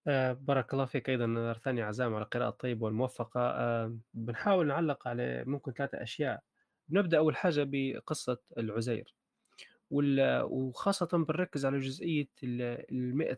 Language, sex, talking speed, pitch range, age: Arabic, male, 135 wpm, 125-160 Hz, 20-39